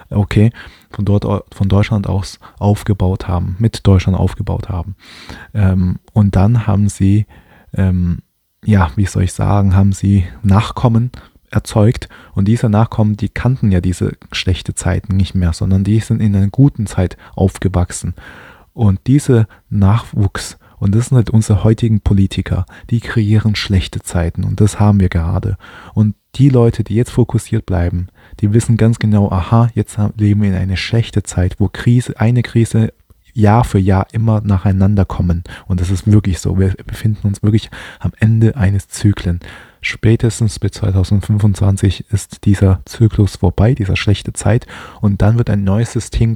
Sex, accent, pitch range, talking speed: male, German, 95-110 Hz, 155 wpm